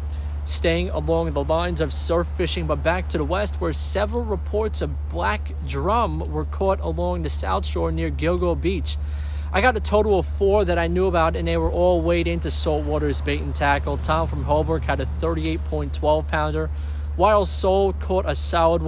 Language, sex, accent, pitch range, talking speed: English, male, American, 75-80 Hz, 190 wpm